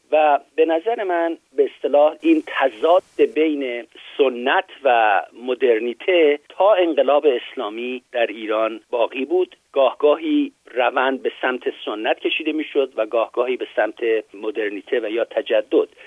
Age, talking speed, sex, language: 50-69, 130 wpm, male, Persian